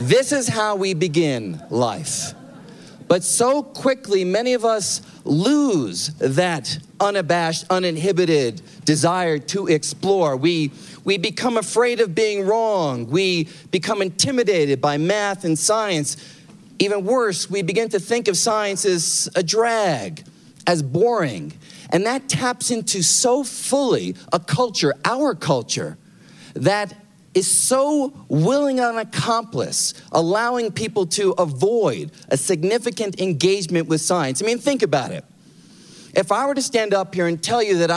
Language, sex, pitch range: English, male, 160-205 Hz